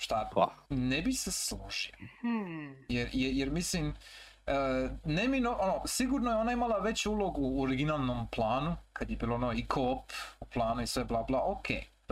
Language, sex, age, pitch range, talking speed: Croatian, male, 30-49, 120-150 Hz, 145 wpm